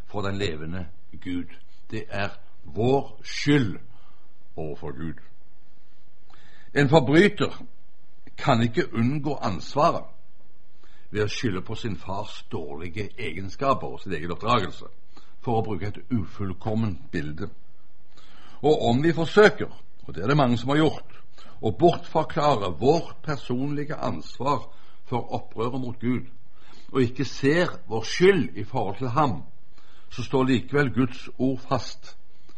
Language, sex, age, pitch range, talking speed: Danish, male, 60-79, 90-130 Hz, 130 wpm